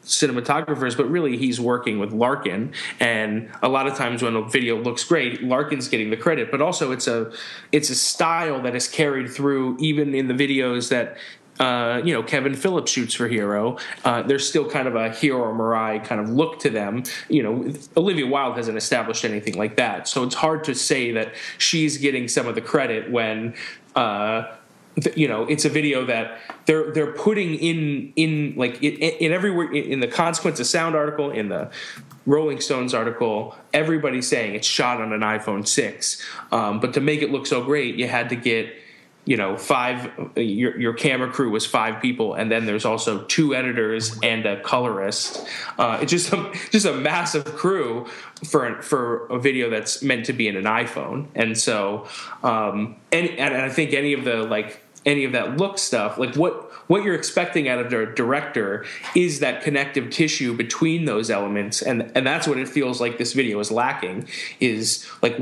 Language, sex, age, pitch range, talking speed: English, male, 30-49, 115-150 Hz, 195 wpm